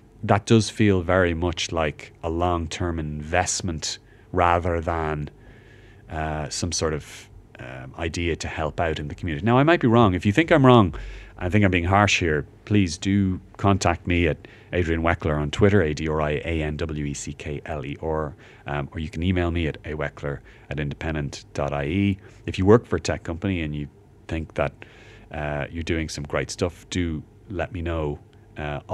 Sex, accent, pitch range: male, Irish, 80-105 Hz